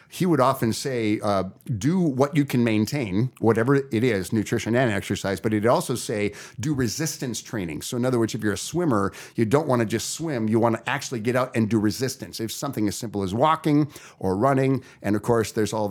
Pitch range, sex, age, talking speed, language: 105-135 Hz, male, 50-69, 215 wpm, English